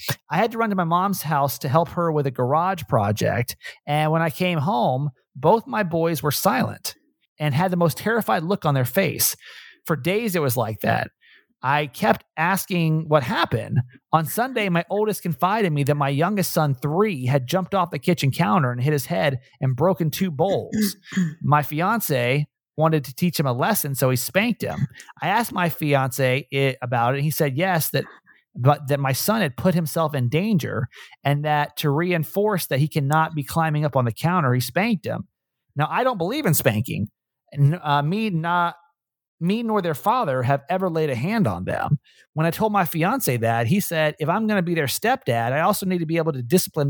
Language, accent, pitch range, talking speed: English, American, 140-185 Hz, 205 wpm